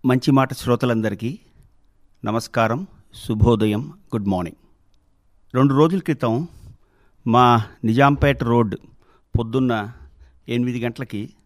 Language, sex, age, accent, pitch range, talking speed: Telugu, male, 50-69, native, 115-150 Hz, 85 wpm